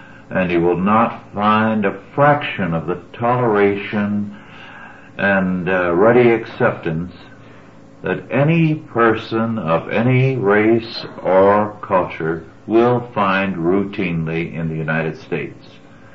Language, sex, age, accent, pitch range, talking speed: English, male, 60-79, American, 90-115 Hz, 110 wpm